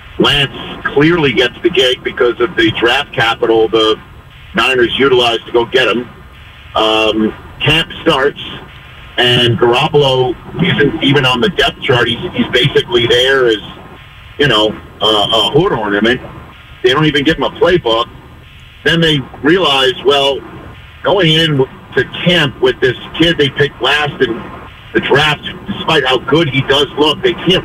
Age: 50-69